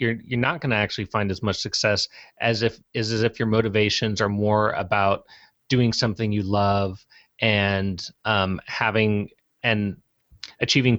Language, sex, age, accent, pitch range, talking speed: English, male, 30-49, American, 100-115 Hz, 165 wpm